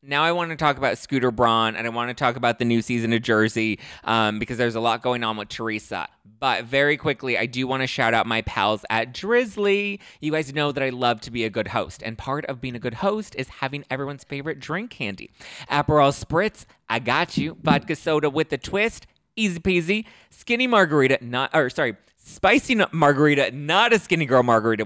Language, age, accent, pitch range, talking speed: English, 20-39, American, 105-150 Hz, 215 wpm